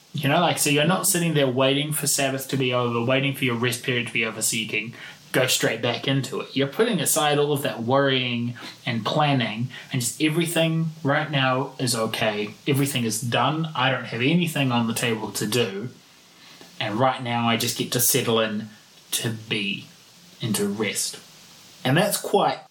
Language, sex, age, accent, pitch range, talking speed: English, male, 20-39, Australian, 120-150 Hz, 195 wpm